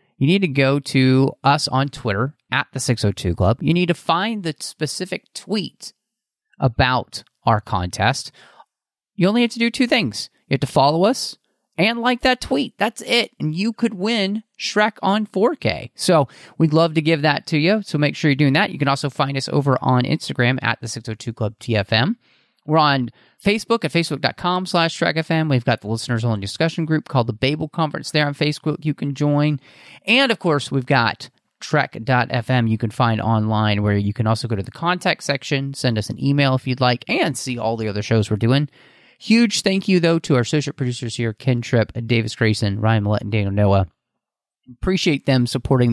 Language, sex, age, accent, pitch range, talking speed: English, male, 30-49, American, 120-175 Hz, 200 wpm